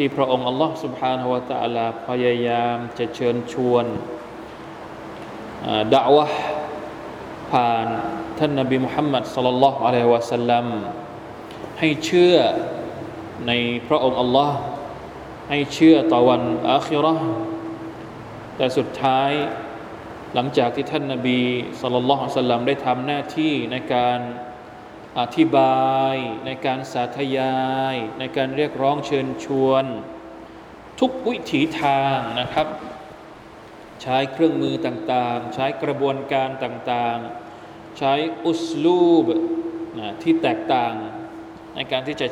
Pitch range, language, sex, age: 120-150 Hz, Thai, male, 20-39